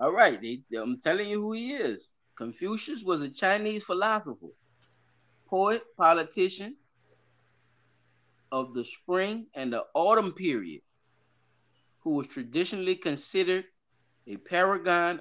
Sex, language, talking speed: male, English, 120 wpm